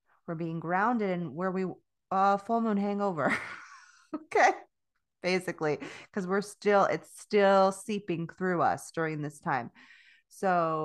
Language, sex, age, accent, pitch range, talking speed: English, female, 20-39, American, 160-195 Hz, 135 wpm